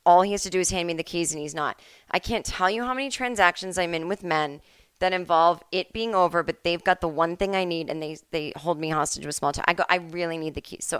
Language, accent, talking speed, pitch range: English, American, 295 wpm, 165-220 Hz